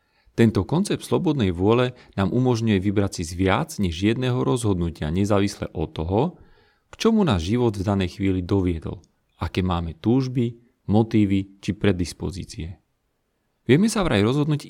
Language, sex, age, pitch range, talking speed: Slovak, male, 40-59, 90-120 Hz, 140 wpm